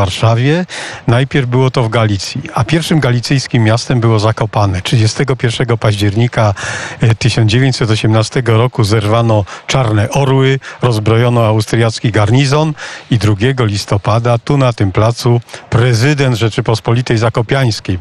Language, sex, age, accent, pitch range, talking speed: Polish, male, 40-59, native, 115-135 Hz, 105 wpm